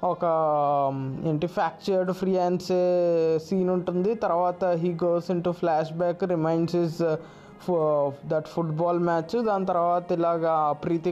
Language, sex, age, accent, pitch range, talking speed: Telugu, male, 20-39, native, 170-215 Hz, 130 wpm